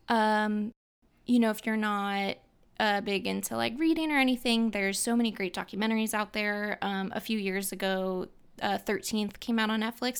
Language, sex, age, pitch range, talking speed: English, female, 20-39, 195-230 Hz, 180 wpm